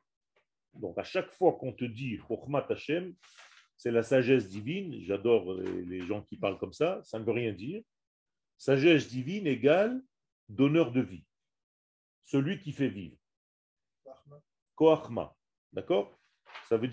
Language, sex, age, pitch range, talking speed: French, male, 40-59, 120-160 Hz, 140 wpm